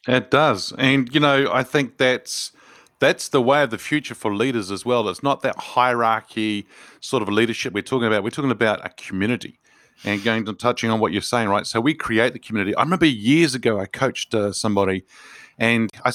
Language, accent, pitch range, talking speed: English, Australian, 100-120 Hz, 210 wpm